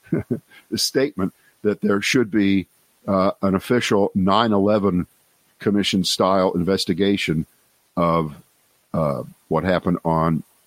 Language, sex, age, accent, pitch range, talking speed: English, male, 50-69, American, 95-140 Hz, 100 wpm